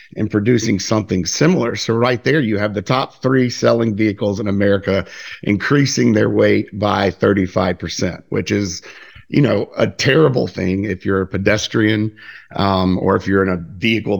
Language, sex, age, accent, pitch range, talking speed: English, male, 50-69, American, 100-125 Hz, 170 wpm